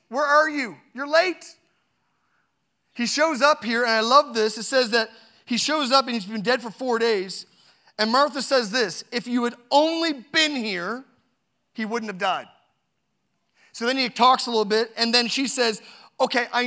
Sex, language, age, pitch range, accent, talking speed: male, English, 30-49, 215-275 Hz, American, 190 wpm